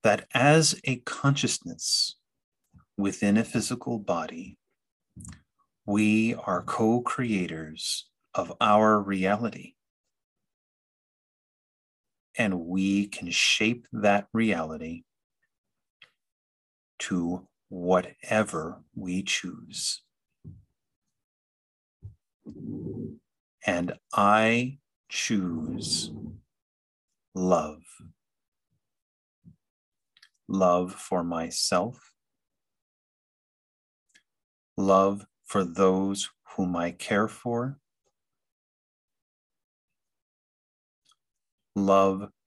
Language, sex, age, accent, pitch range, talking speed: English, male, 50-69, American, 90-110 Hz, 55 wpm